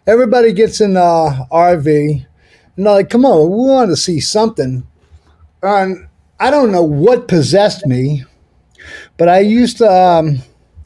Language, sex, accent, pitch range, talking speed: English, male, American, 130-195 Hz, 150 wpm